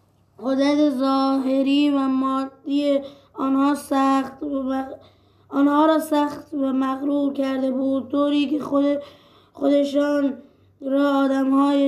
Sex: female